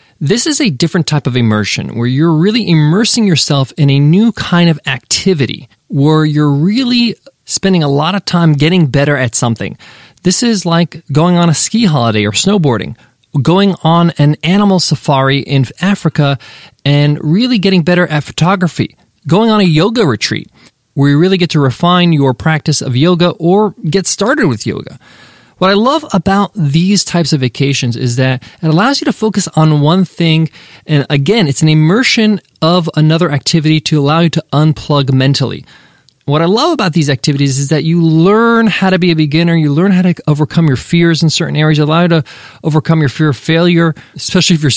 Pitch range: 145-180 Hz